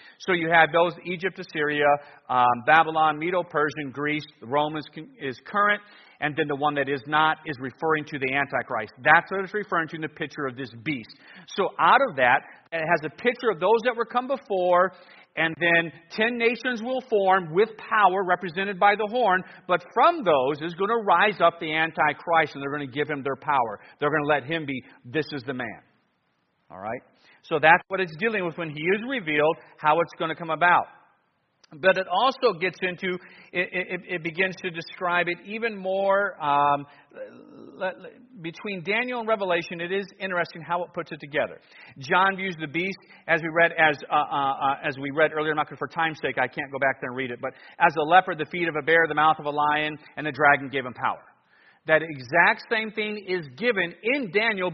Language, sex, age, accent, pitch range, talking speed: English, male, 50-69, American, 150-195 Hz, 210 wpm